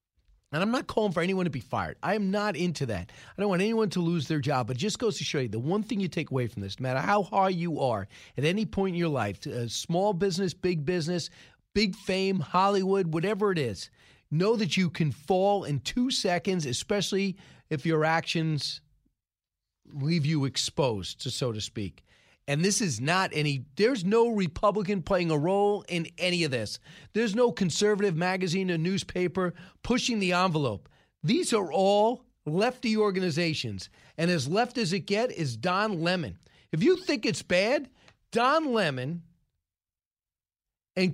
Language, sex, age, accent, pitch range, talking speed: English, male, 40-59, American, 140-205 Hz, 185 wpm